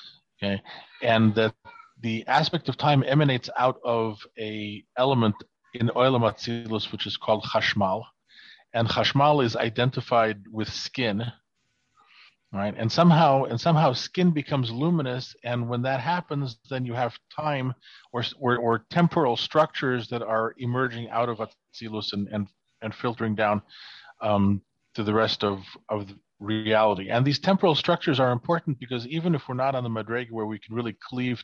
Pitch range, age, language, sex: 110-130 Hz, 40-59, English, male